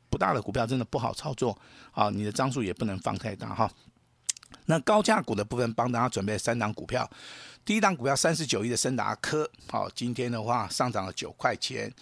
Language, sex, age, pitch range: Chinese, male, 50-69, 105-130 Hz